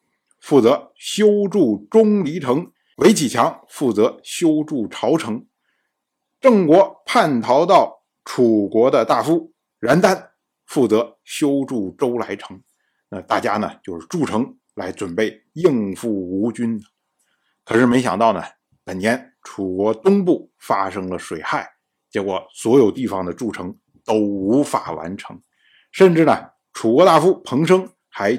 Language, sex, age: Chinese, male, 50-69